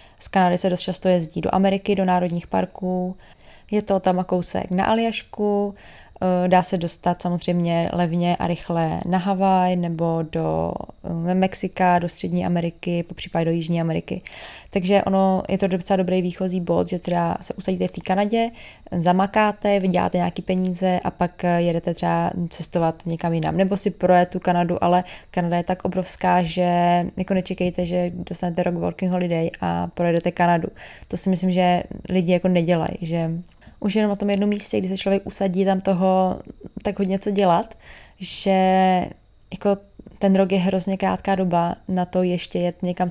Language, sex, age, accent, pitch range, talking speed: Czech, female, 20-39, native, 175-190 Hz, 165 wpm